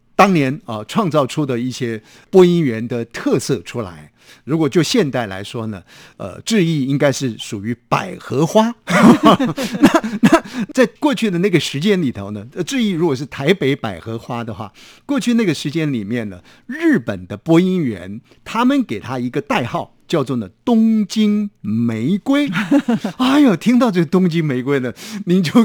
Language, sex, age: Chinese, male, 50-69